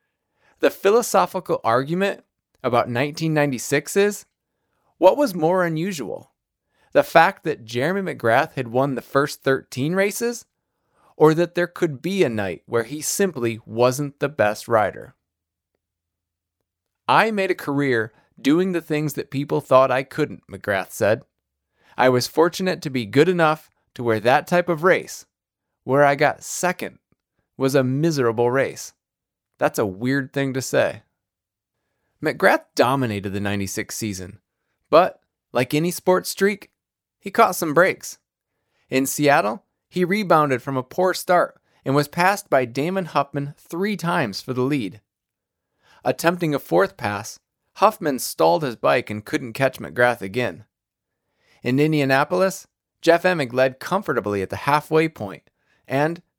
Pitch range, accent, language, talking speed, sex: 115-170 Hz, American, English, 140 wpm, male